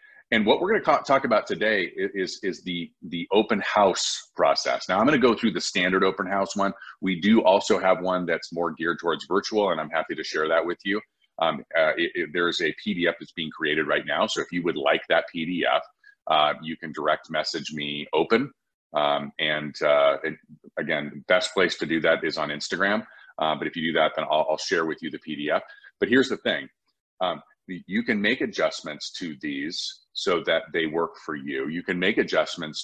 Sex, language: male, English